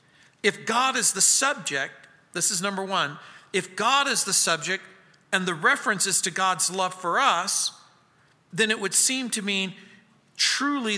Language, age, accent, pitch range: English, 50-69, American, 170-225 Hz